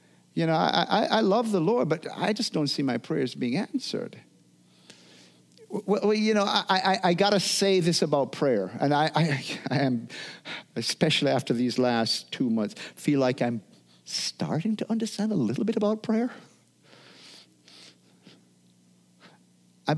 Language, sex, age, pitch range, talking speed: English, male, 50-69, 110-180 Hz, 160 wpm